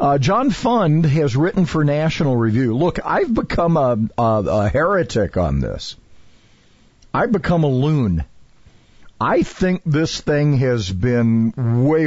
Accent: American